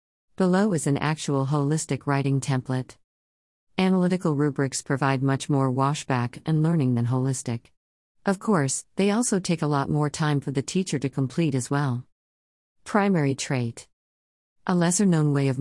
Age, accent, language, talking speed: 40-59, American, English, 155 wpm